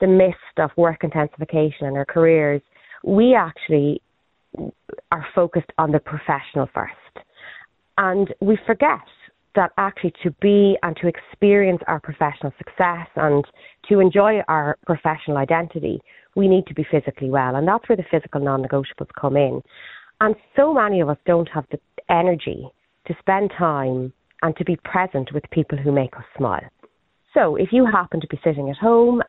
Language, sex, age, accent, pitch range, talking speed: English, female, 30-49, Irish, 145-185 Hz, 165 wpm